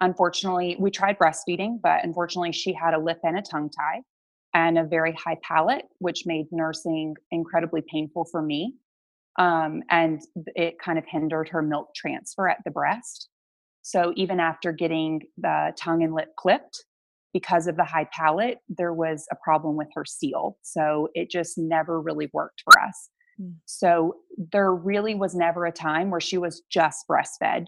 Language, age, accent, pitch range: English, 20-39, American, 160-180 Hz